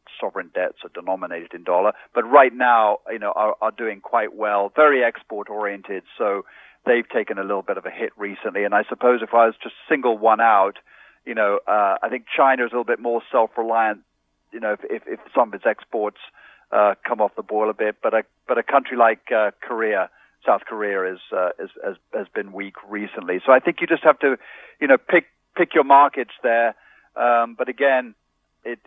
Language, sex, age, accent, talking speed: English, male, 40-59, British, 215 wpm